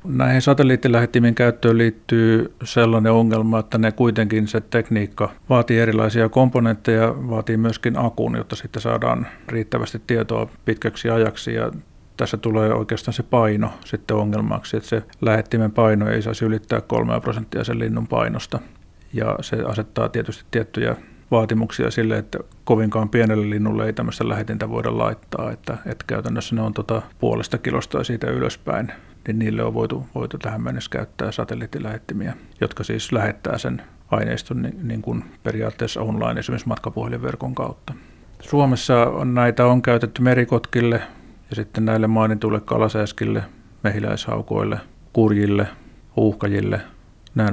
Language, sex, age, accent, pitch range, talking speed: Finnish, male, 50-69, native, 110-115 Hz, 135 wpm